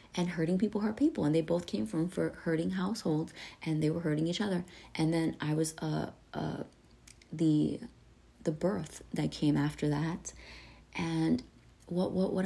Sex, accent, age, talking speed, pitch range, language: female, American, 30-49, 180 wpm, 155-195 Hz, English